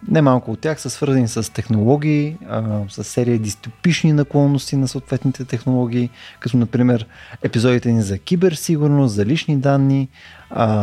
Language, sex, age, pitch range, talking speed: Bulgarian, male, 20-39, 115-155 Hz, 140 wpm